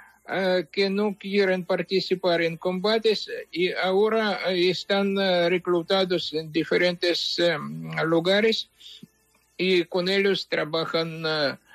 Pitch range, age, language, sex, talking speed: 170-200 Hz, 60-79, English, male, 85 wpm